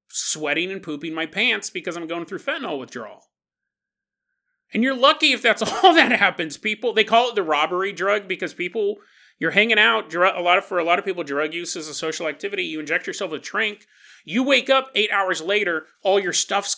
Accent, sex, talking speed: American, male, 210 wpm